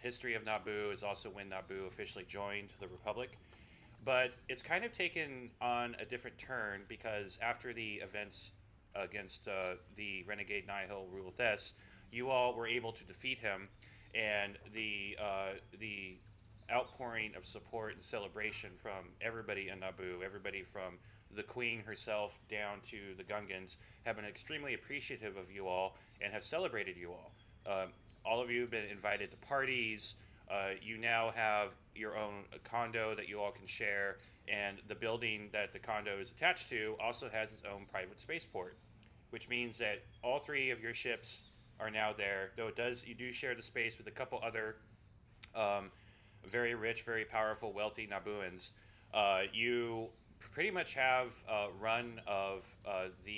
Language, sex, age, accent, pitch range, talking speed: English, male, 30-49, American, 100-115 Hz, 165 wpm